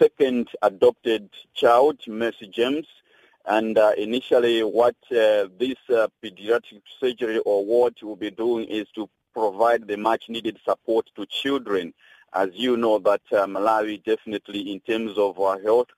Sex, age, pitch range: male, 40-59, 115-160 Hz